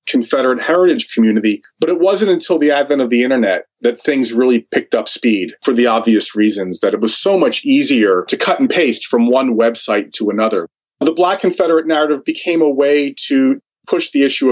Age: 30-49